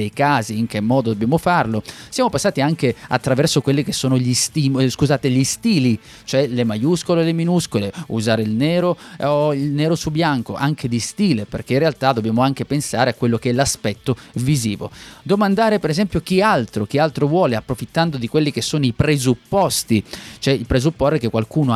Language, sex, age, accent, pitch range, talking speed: Italian, male, 30-49, native, 115-160 Hz, 180 wpm